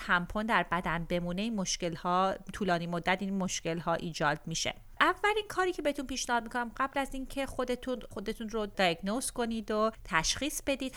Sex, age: female, 30-49